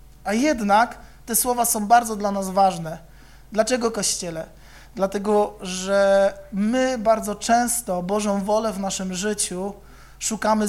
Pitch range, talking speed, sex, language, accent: 190-235 Hz, 125 wpm, male, Polish, native